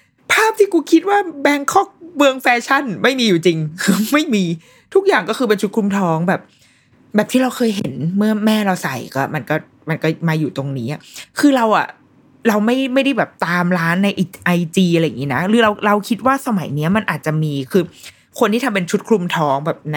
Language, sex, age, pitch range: Thai, female, 20-39, 155-210 Hz